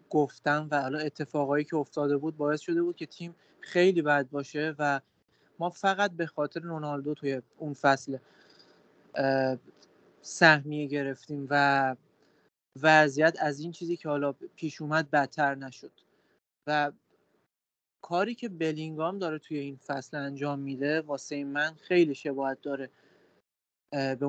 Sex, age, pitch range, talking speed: male, 30-49, 140-165 Hz, 130 wpm